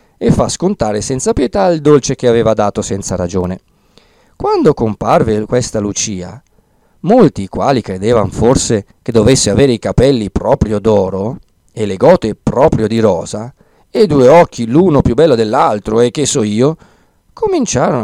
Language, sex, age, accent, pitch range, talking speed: Italian, male, 50-69, native, 100-150 Hz, 155 wpm